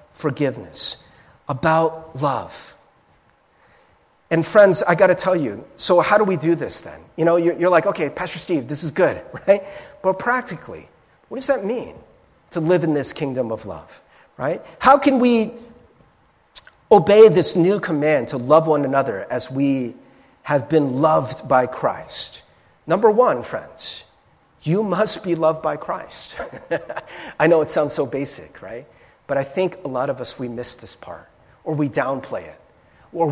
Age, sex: 40-59, male